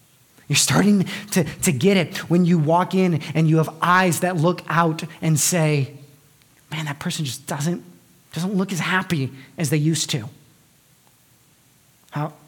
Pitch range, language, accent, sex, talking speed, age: 145-195 Hz, English, American, male, 160 wpm, 30-49